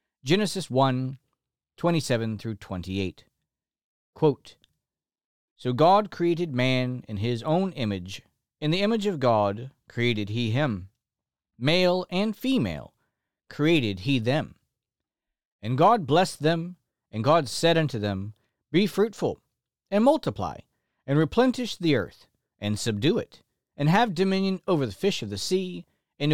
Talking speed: 130 wpm